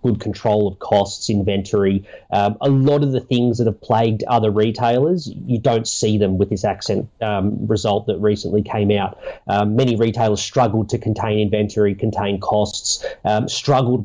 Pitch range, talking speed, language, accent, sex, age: 105-130 Hz, 170 wpm, English, Australian, male, 30-49